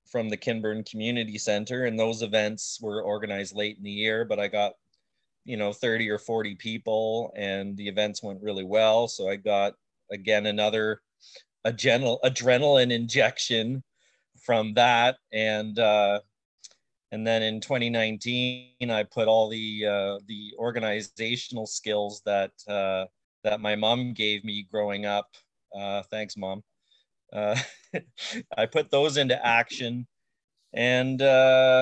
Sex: male